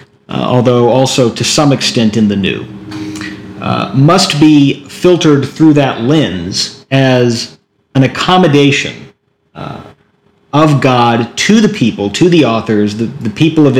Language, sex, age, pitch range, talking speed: English, male, 40-59, 120-150 Hz, 140 wpm